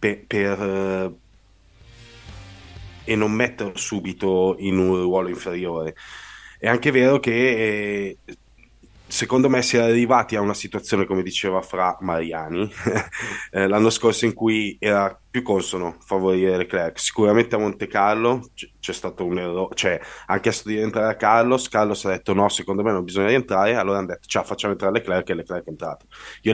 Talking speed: 160 wpm